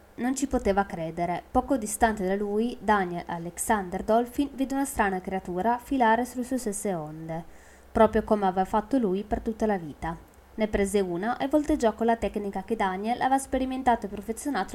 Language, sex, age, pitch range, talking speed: Italian, female, 20-39, 185-245 Hz, 175 wpm